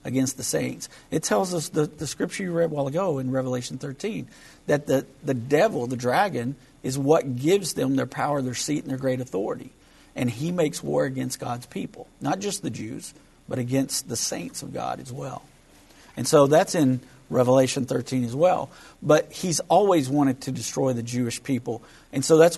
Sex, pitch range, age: male, 130-150 Hz, 50-69